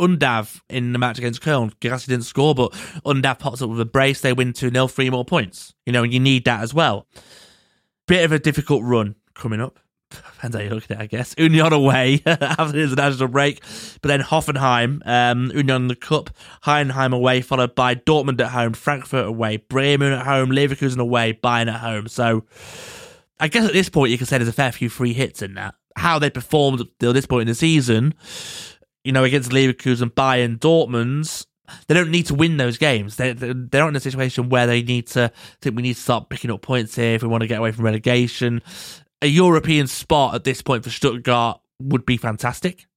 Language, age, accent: English, 20-39, British